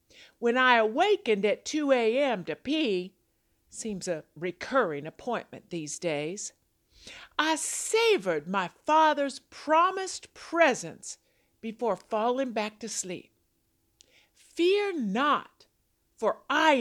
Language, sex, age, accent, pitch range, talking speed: English, female, 50-69, American, 210-320 Hz, 105 wpm